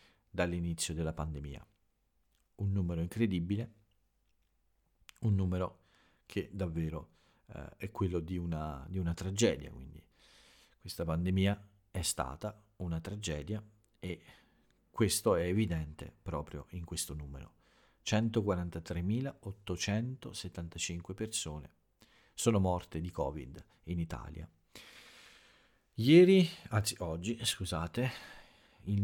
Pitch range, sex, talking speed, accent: 80-105 Hz, male, 95 wpm, native